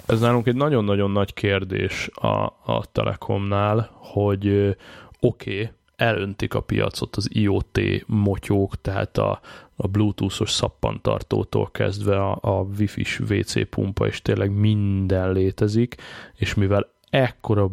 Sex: male